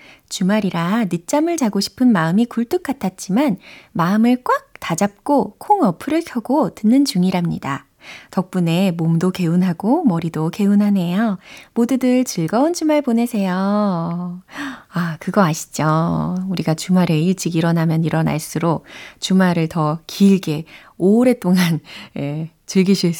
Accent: native